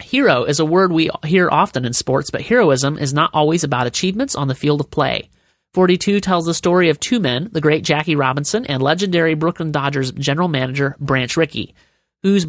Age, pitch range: 30-49, 145-190 Hz